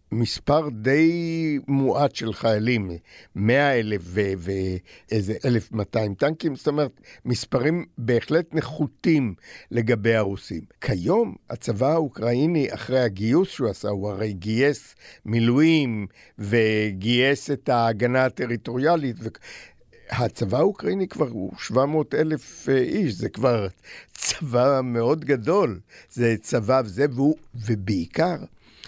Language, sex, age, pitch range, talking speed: Hebrew, male, 60-79, 110-150 Hz, 105 wpm